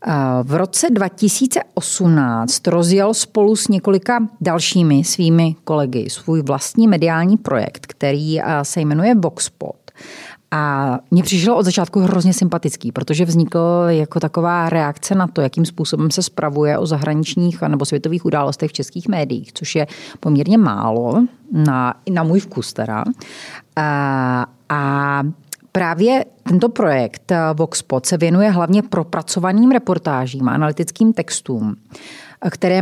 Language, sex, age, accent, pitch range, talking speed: Czech, female, 40-59, native, 145-190 Hz, 125 wpm